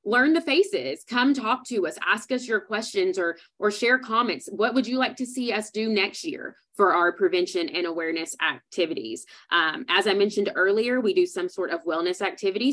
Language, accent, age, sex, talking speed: English, American, 20-39, female, 205 wpm